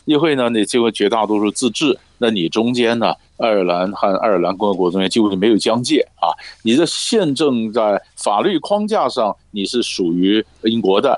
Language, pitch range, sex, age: Chinese, 100-170 Hz, male, 50-69